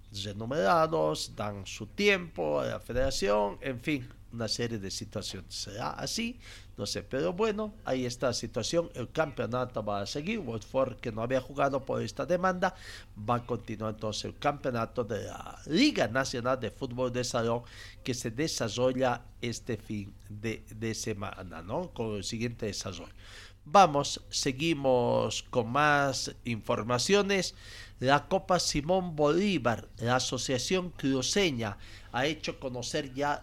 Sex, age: male, 50-69